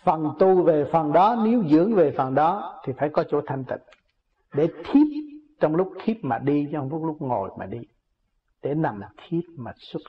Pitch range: 140-185 Hz